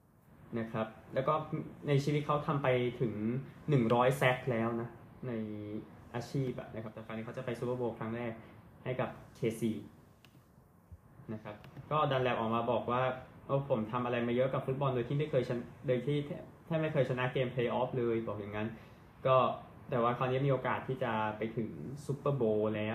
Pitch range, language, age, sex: 115-135 Hz, Thai, 20-39, male